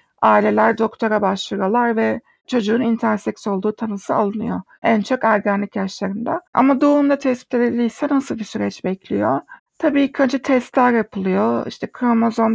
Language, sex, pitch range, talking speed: Turkish, female, 210-245 Hz, 130 wpm